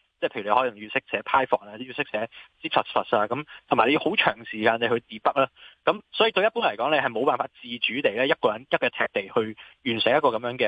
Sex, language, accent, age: male, Chinese, native, 20-39